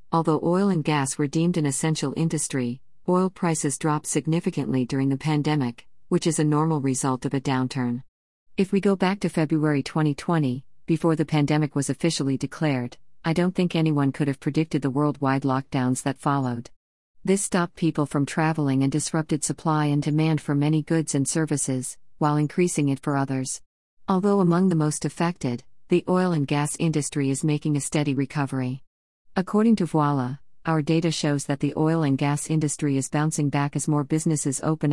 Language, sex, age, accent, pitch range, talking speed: English, female, 50-69, American, 135-160 Hz, 175 wpm